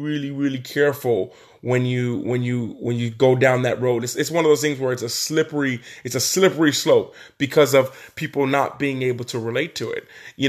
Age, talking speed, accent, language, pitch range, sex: 20-39, 215 wpm, American, English, 130-170 Hz, male